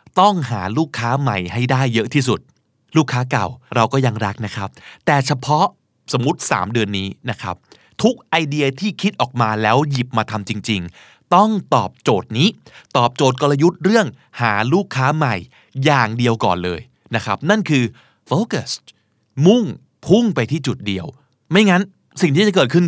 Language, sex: Thai, male